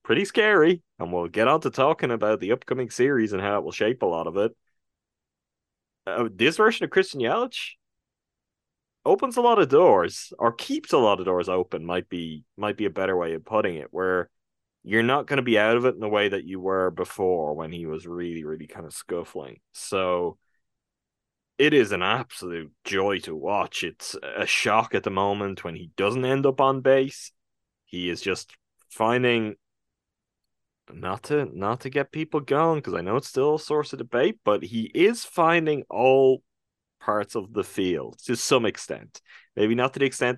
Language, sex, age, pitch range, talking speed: English, male, 20-39, 95-135 Hz, 195 wpm